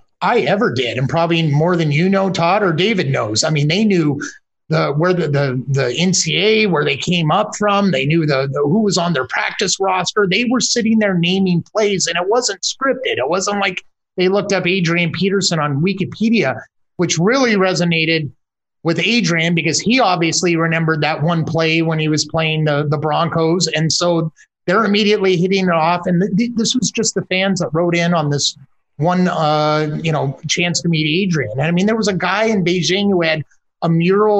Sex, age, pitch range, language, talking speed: male, 30-49, 160-195 Hz, English, 205 wpm